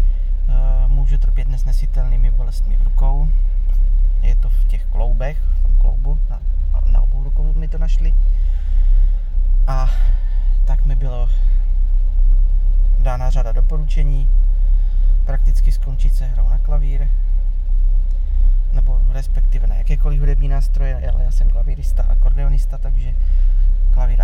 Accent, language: native, Czech